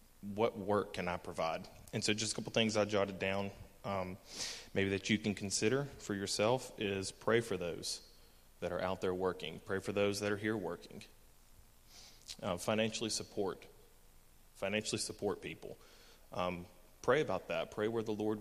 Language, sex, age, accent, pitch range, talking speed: English, male, 30-49, American, 95-105 Hz, 170 wpm